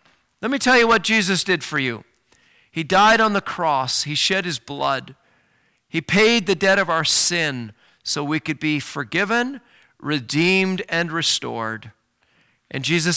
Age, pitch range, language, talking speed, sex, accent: 40-59, 150-225 Hz, English, 160 wpm, male, American